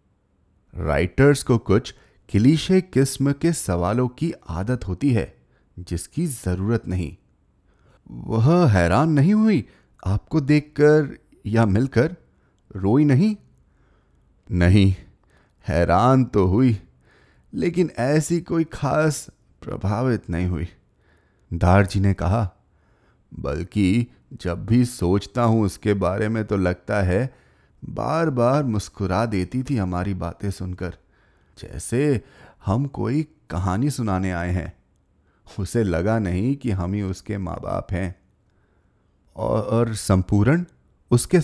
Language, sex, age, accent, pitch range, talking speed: Hindi, male, 30-49, native, 90-135 Hz, 110 wpm